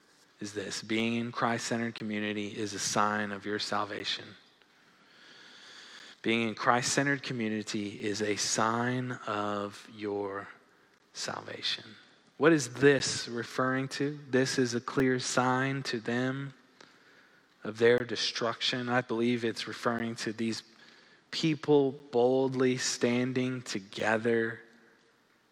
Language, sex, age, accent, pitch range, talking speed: English, male, 20-39, American, 115-145 Hz, 110 wpm